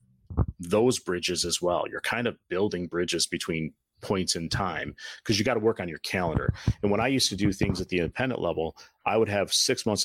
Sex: male